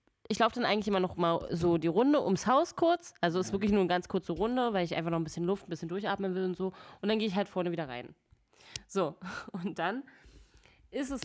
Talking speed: 255 wpm